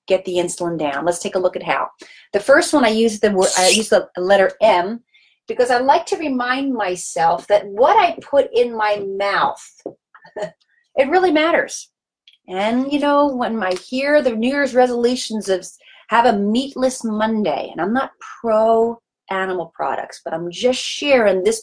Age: 30-49